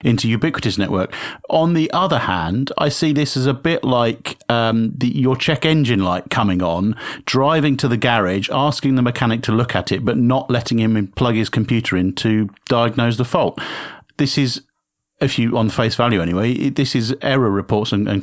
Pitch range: 100-125 Hz